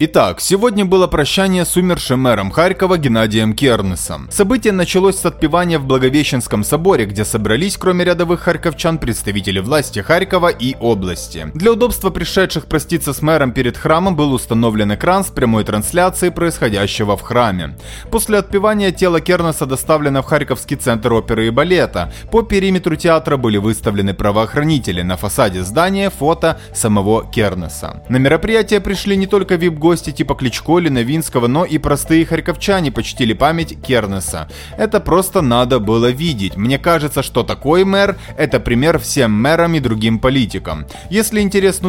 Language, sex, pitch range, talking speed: Russian, male, 115-175 Hz, 150 wpm